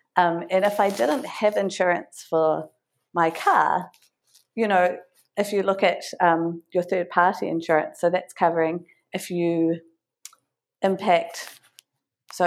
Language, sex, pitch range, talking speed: English, female, 165-190 Hz, 135 wpm